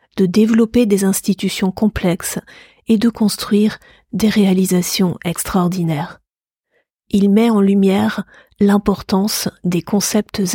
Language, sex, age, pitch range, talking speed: French, female, 40-59, 195-215 Hz, 100 wpm